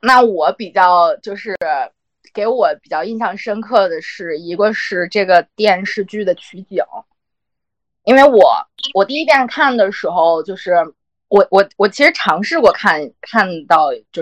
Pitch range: 195-275 Hz